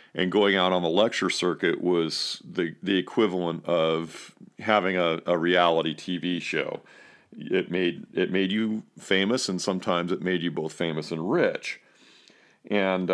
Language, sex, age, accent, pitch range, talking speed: English, male, 40-59, American, 85-105 Hz, 155 wpm